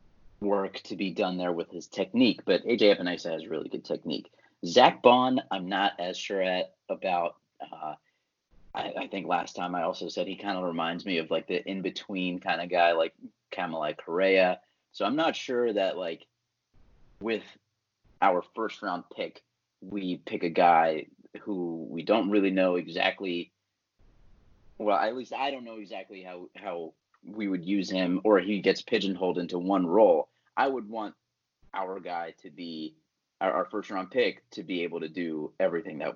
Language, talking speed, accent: English, 180 wpm, American